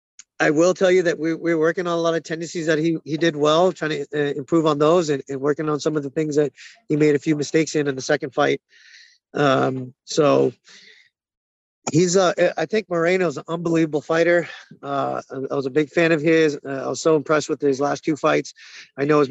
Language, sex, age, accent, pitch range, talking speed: English, male, 30-49, American, 145-170 Hz, 235 wpm